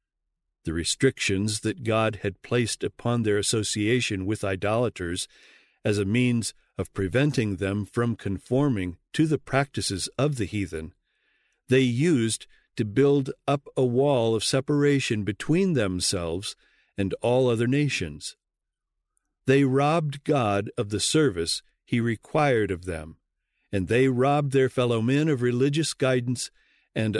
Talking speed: 130 wpm